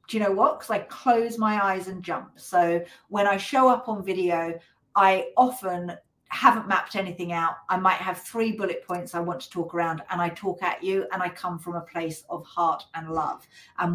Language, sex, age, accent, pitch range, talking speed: English, female, 40-59, British, 170-215 Hz, 220 wpm